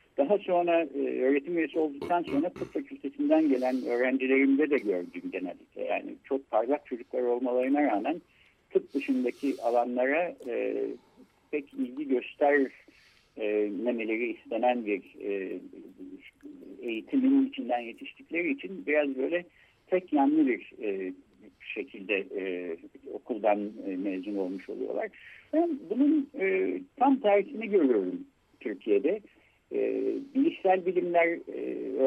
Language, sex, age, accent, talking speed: Turkish, male, 60-79, native, 110 wpm